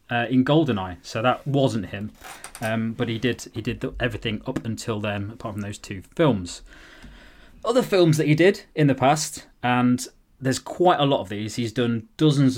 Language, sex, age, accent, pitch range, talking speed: English, male, 20-39, British, 110-140 Hz, 195 wpm